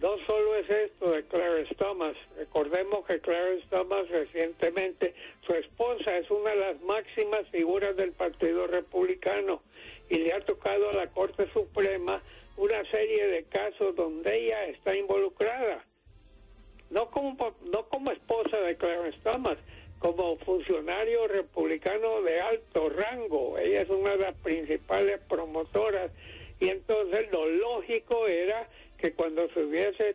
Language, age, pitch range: English, 60-79, 175-225 Hz